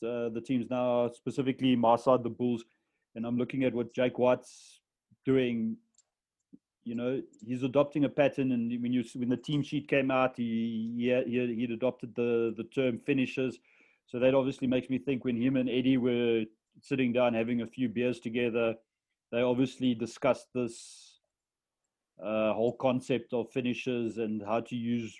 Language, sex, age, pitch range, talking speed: English, male, 30-49, 120-130 Hz, 170 wpm